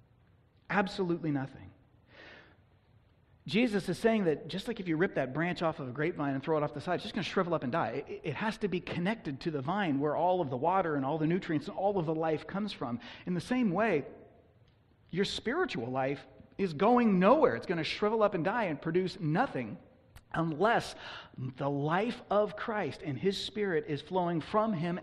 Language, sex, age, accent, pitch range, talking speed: English, male, 30-49, American, 125-180 Hz, 210 wpm